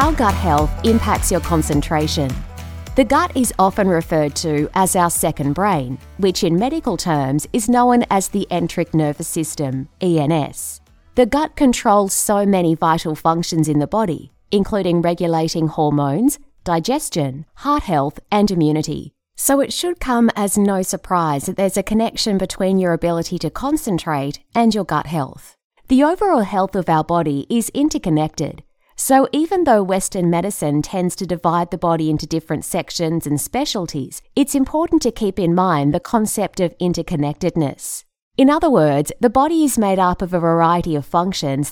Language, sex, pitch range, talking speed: English, female, 155-225 Hz, 160 wpm